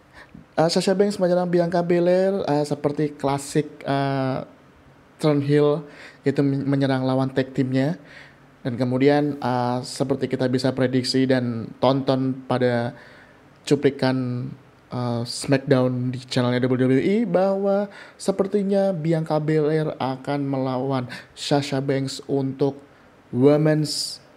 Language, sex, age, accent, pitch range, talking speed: Indonesian, male, 20-39, native, 135-175 Hz, 105 wpm